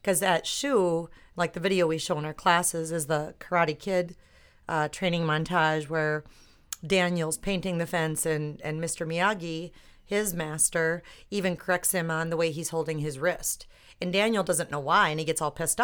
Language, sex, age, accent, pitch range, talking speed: English, female, 40-59, American, 165-200 Hz, 185 wpm